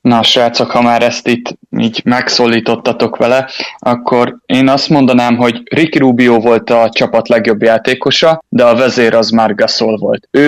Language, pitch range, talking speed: Hungarian, 115-125 Hz, 165 wpm